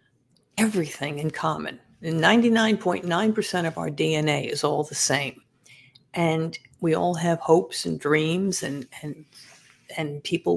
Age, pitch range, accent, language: 50-69, 145-180 Hz, American, English